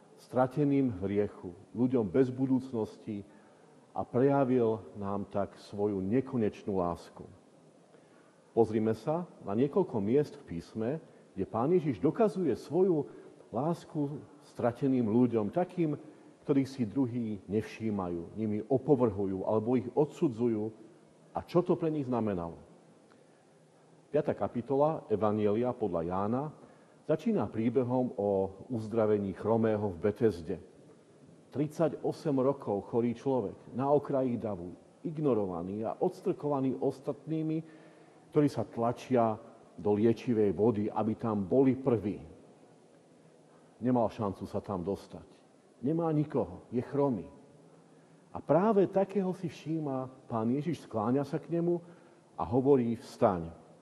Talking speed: 110 wpm